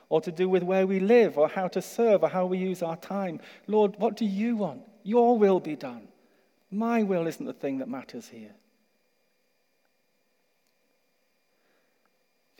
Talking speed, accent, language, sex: 165 wpm, British, English, male